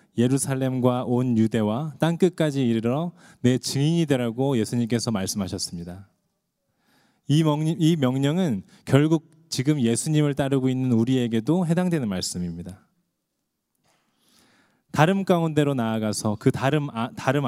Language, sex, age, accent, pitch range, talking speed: English, male, 20-39, Korean, 120-160 Hz, 90 wpm